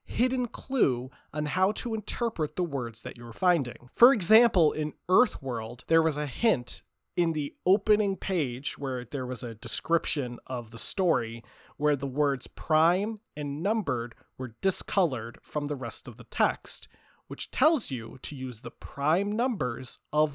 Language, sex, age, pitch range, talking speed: English, male, 30-49, 130-185 Hz, 160 wpm